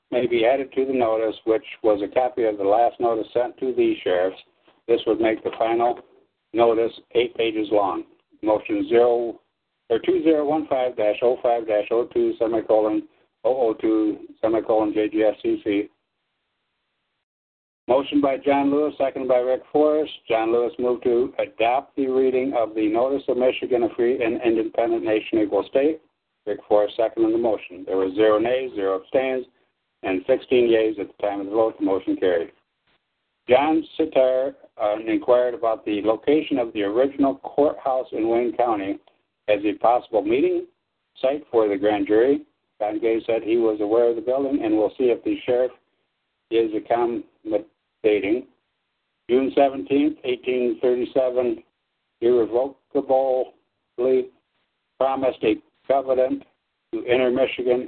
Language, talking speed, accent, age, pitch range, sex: English, 140 wpm, American, 60-79, 115-160 Hz, male